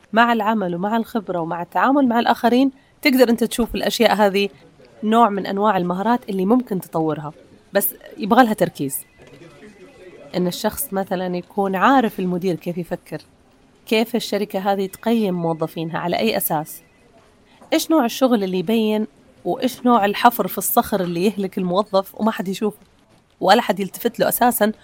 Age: 30-49